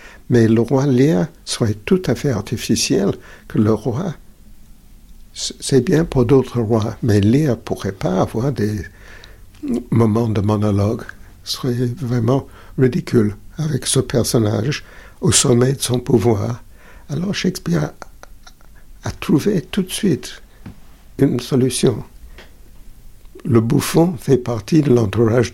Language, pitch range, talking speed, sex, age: French, 110-150 Hz, 125 wpm, male, 60-79